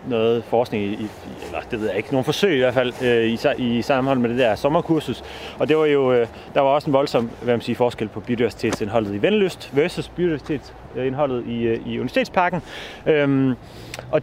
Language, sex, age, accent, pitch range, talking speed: Danish, male, 30-49, native, 115-150 Hz, 160 wpm